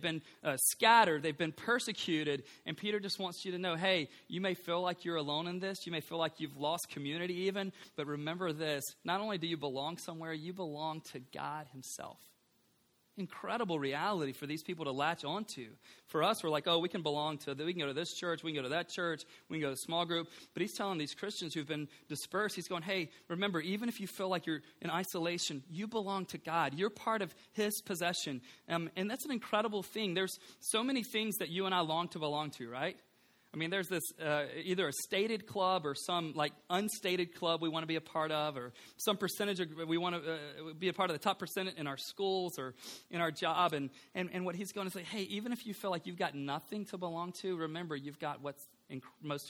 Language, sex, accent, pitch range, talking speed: English, male, American, 155-190 Hz, 235 wpm